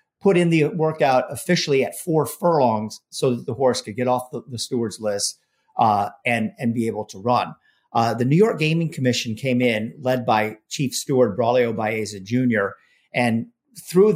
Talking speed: 180 wpm